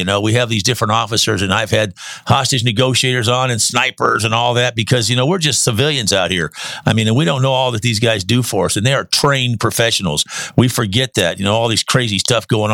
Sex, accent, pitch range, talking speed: male, American, 105-130 Hz, 255 wpm